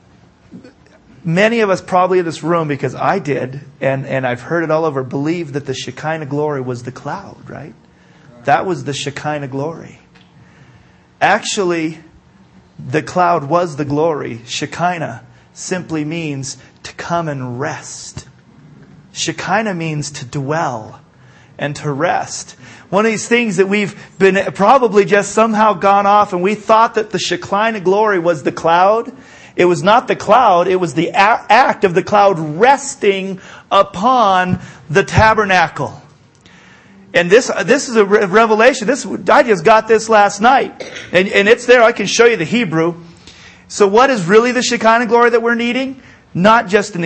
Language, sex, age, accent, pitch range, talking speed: English, male, 30-49, American, 150-210 Hz, 160 wpm